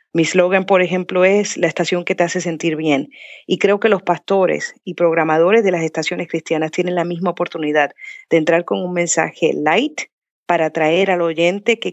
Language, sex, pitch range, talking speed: Spanish, female, 170-200 Hz, 190 wpm